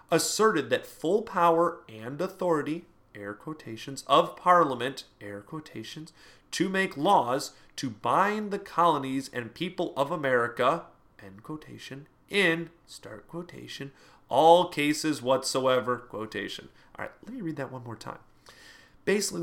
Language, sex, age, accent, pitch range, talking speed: English, male, 30-49, American, 115-165 Hz, 130 wpm